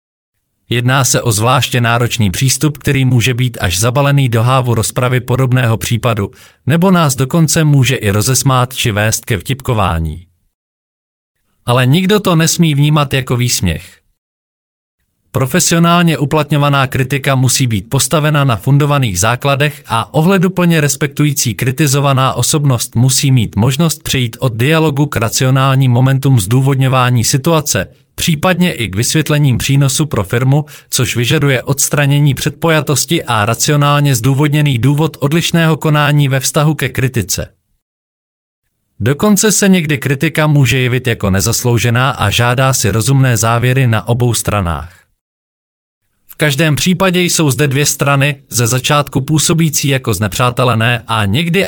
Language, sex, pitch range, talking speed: Czech, male, 115-150 Hz, 125 wpm